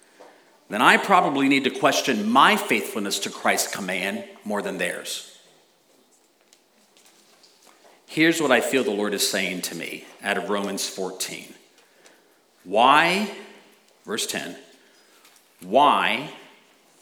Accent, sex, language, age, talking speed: American, male, English, 50-69, 115 wpm